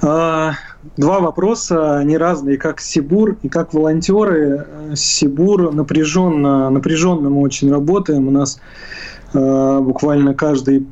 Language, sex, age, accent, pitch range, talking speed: Russian, male, 20-39, native, 135-155 Hz, 110 wpm